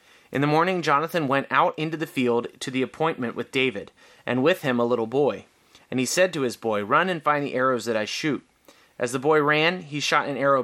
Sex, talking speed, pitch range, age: male, 235 wpm, 120-155 Hz, 30-49